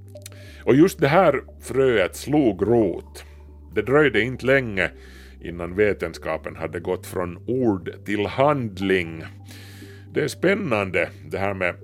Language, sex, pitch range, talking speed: Swedish, male, 80-115 Hz, 125 wpm